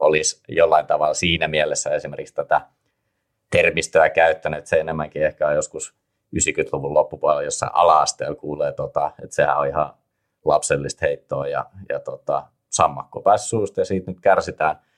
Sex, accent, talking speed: male, native, 135 wpm